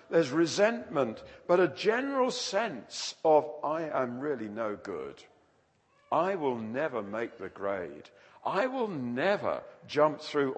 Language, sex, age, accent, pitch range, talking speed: English, male, 50-69, British, 150-220 Hz, 130 wpm